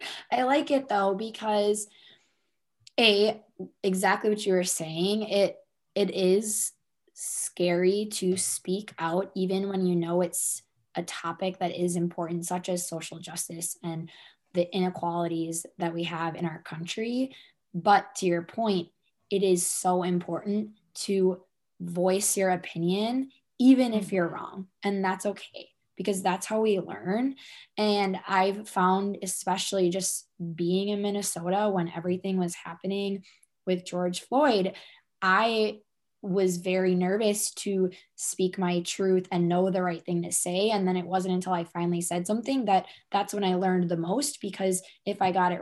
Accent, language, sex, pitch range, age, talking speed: American, English, female, 175-205 Hz, 20-39, 155 wpm